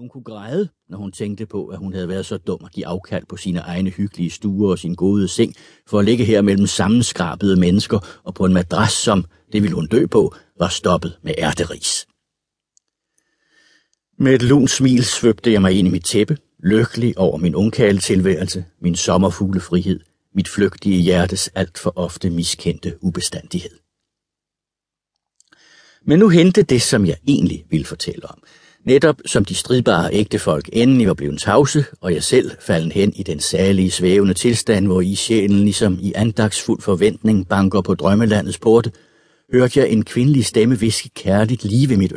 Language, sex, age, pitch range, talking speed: Danish, male, 60-79, 95-120 Hz, 175 wpm